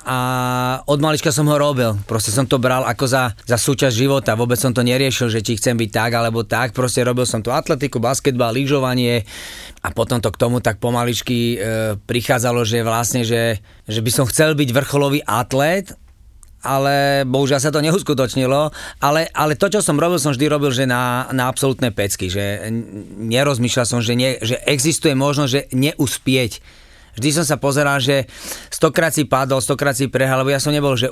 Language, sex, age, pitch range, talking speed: Slovak, male, 30-49, 120-145 Hz, 185 wpm